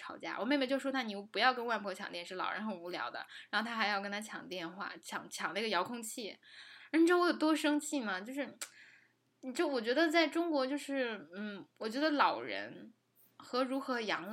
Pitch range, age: 195-255 Hz, 10-29